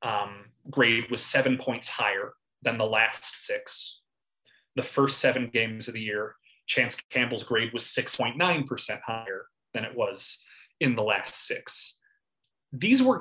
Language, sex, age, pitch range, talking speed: English, male, 30-49, 125-195 Hz, 145 wpm